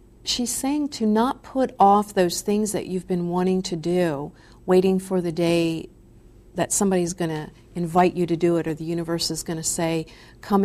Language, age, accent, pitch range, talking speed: English, 50-69, American, 160-185 Hz, 195 wpm